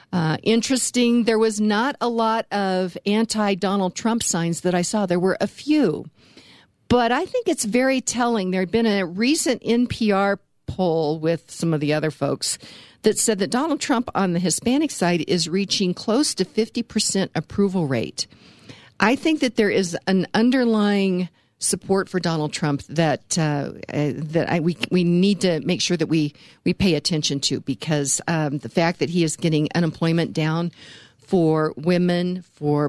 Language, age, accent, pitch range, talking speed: English, 50-69, American, 155-195 Hz, 170 wpm